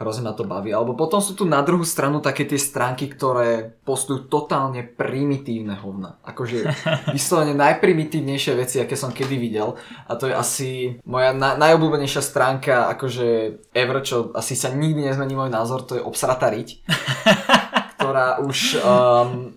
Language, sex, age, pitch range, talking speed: Slovak, male, 20-39, 120-145 Hz, 155 wpm